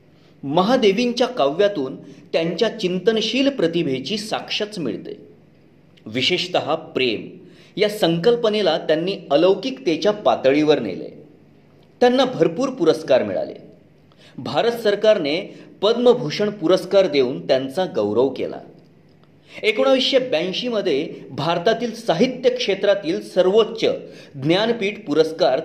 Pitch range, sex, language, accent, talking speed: 165-230 Hz, male, Marathi, native, 80 wpm